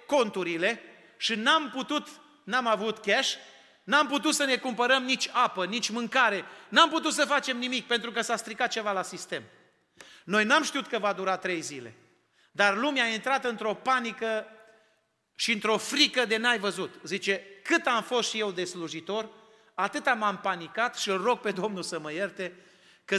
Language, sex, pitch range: Romanian, male, 195-245 Hz